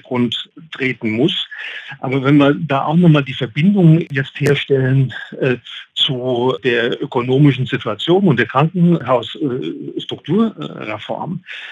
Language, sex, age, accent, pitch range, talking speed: German, male, 50-69, German, 130-155 Hz, 120 wpm